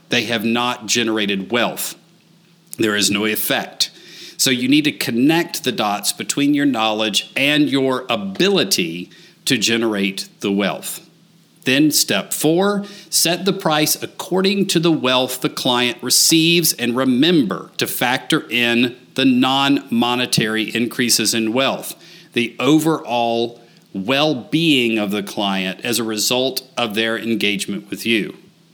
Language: English